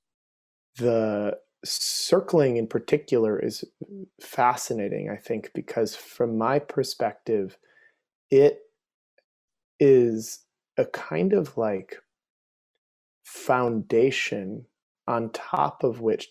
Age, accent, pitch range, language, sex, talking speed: 20-39, American, 105-130 Hz, English, male, 85 wpm